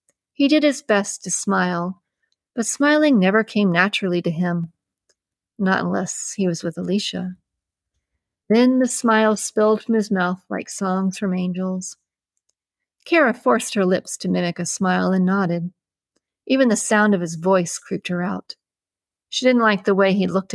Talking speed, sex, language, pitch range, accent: 165 wpm, female, English, 180-215 Hz, American